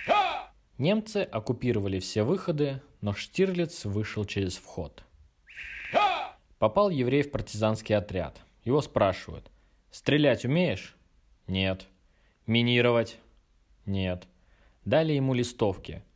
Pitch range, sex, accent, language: 100-165 Hz, male, native, Russian